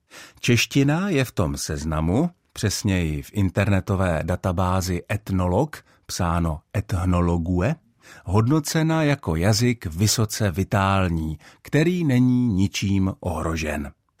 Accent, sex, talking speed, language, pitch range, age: native, male, 90 wpm, Czech, 90-120 Hz, 50-69